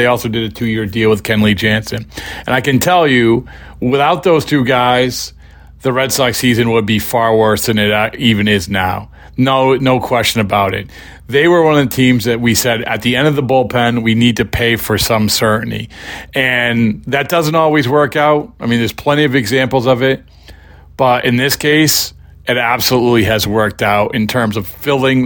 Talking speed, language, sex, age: 205 wpm, English, male, 40-59